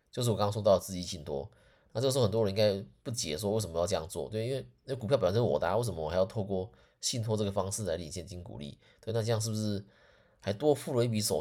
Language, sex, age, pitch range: Chinese, male, 20-39, 95-110 Hz